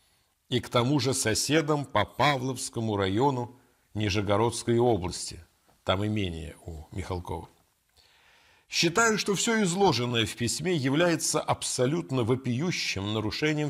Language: Russian